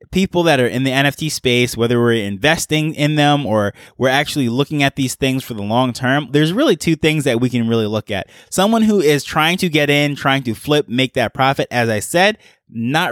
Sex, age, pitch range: male, 20-39, 125-155 Hz